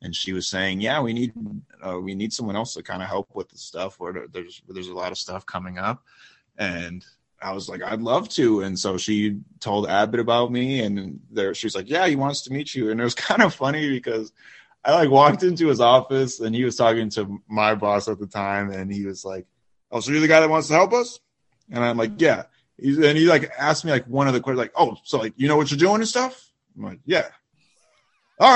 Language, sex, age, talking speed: English, male, 30-49, 250 wpm